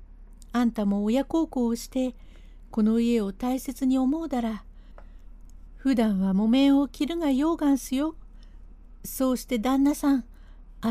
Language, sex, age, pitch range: Japanese, female, 50-69, 195-265 Hz